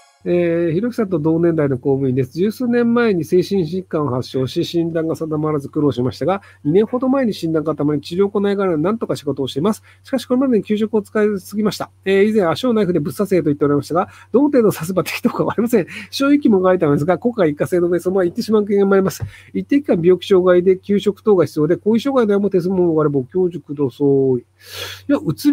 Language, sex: Japanese, male